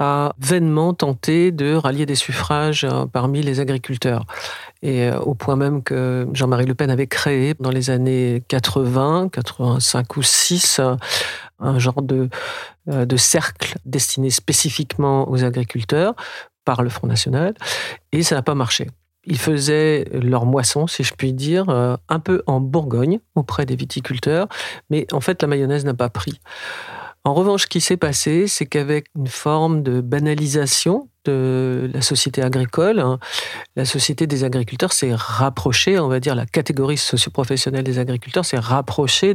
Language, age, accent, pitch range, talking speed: French, 50-69, French, 130-155 Hz, 150 wpm